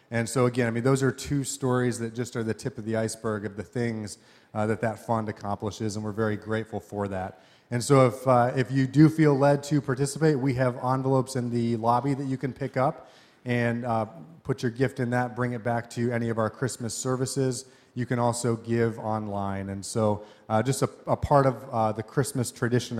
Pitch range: 110-135 Hz